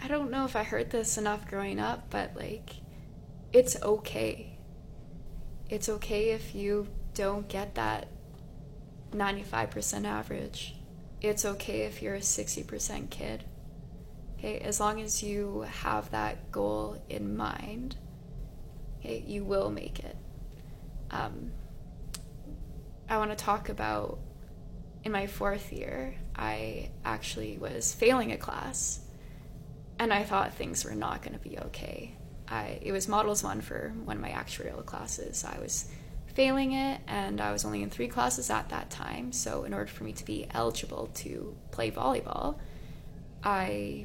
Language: English